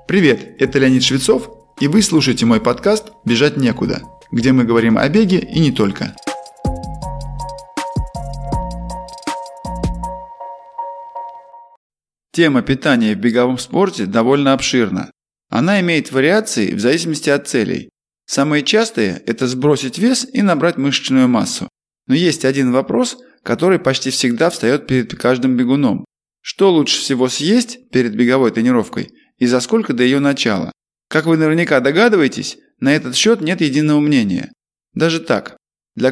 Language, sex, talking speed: Russian, male, 130 wpm